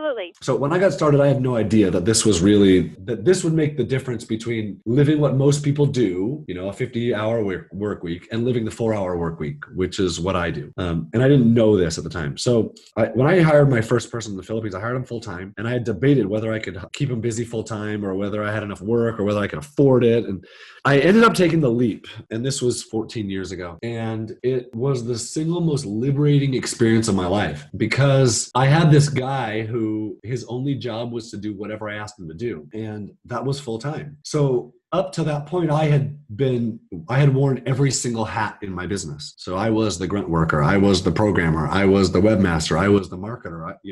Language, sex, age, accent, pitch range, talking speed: English, male, 30-49, American, 100-135 Hz, 240 wpm